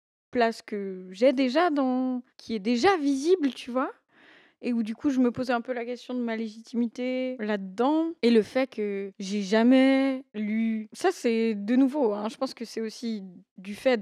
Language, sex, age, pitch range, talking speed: French, female, 20-39, 210-265 Hz, 195 wpm